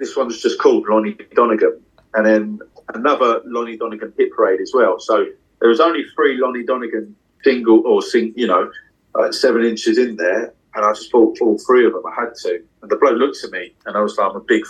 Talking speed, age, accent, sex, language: 230 wpm, 30-49, British, male, English